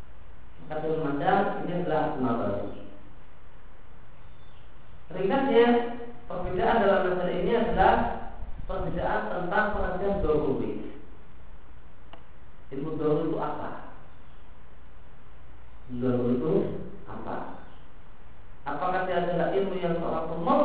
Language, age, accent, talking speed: Indonesian, 50-69, native, 65 wpm